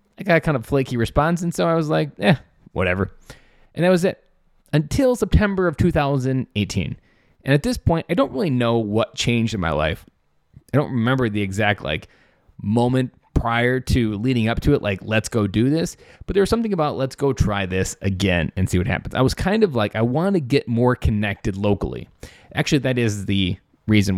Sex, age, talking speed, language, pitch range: male, 20-39, 210 wpm, English, 105-145 Hz